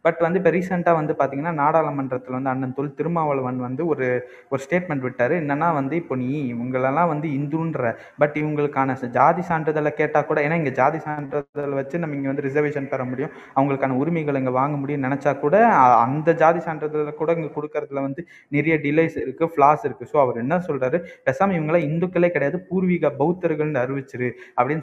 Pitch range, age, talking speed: 125-155 Hz, 20-39, 170 wpm